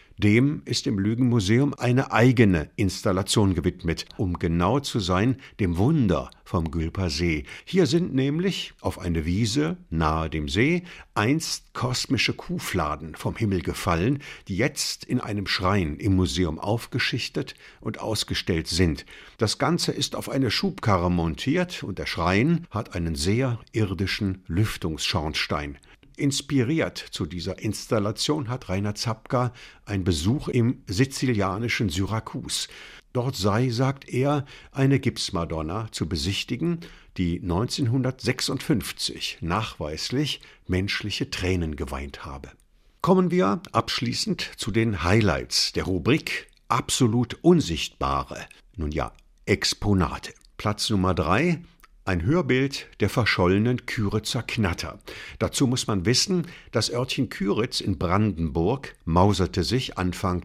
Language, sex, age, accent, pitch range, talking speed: German, male, 60-79, German, 90-130 Hz, 120 wpm